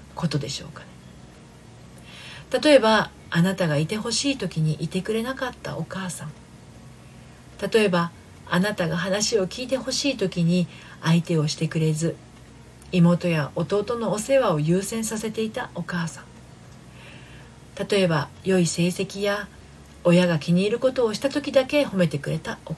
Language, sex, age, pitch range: Japanese, female, 40-59, 150-210 Hz